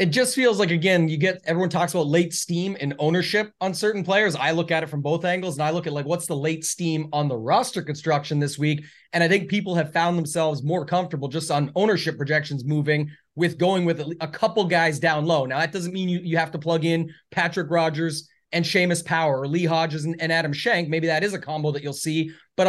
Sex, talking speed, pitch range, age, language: male, 245 wpm, 155-185 Hz, 30-49, English